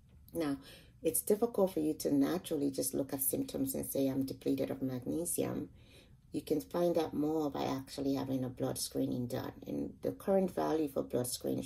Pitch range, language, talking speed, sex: 135-150 Hz, English, 185 wpm, female